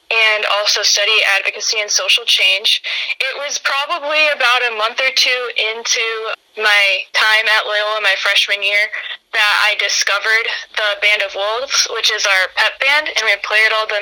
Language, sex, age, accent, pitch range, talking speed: English, female, 10-29, American, 205-245 Hz, 170 wpm